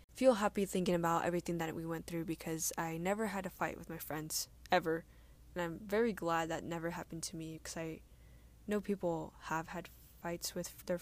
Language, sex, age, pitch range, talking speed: English, female, 10-29, 165-190 Hz, 200 wpm